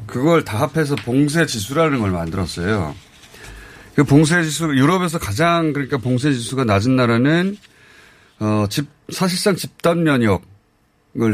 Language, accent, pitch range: Korean, native, 105-150 Hz